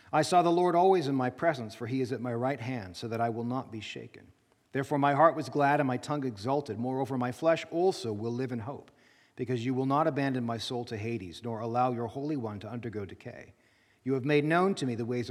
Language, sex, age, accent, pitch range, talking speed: English, male, 40-59, American, 120-155 Hz, 250 wpm